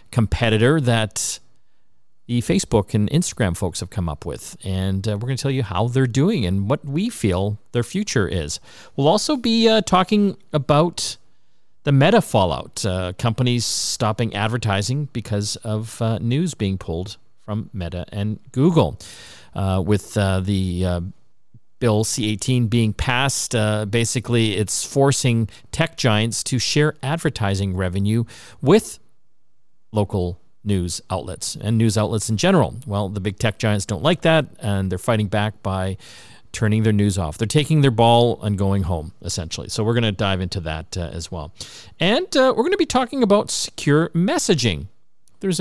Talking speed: 165 wpm